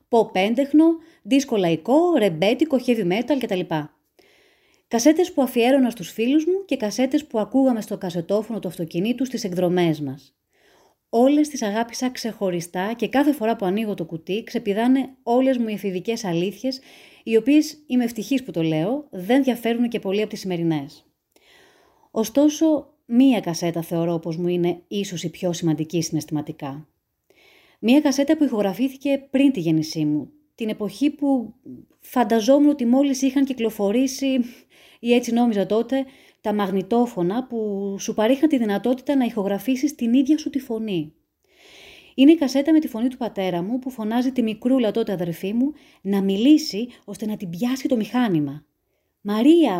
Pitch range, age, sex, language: 195-275 Hz, 30-49, female, Greek